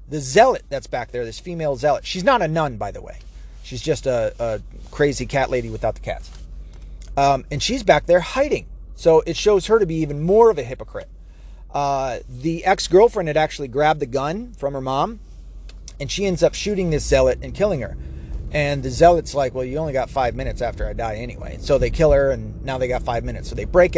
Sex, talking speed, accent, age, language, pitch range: male, 225 wpm, American, 30-49, English, 125-160 Hz